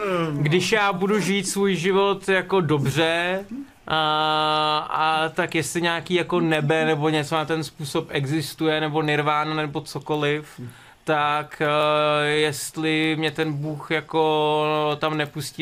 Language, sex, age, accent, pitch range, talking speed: Czech, male, 20-39, native, 140-165 Hz, 130 wpm